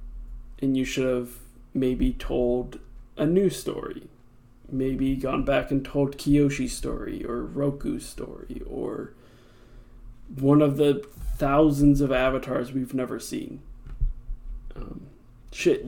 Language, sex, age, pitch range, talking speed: English, male, 20-39, 120-145 Hz, 115 wpm